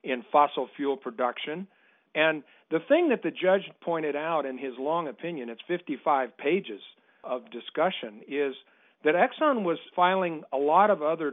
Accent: American